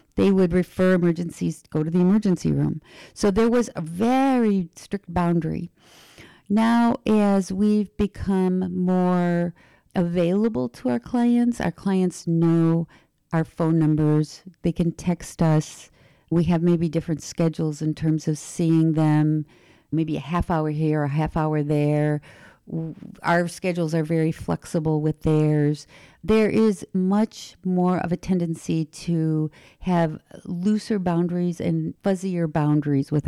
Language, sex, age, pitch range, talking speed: English, female, 50-69, 155-185 Hz, 140 wpm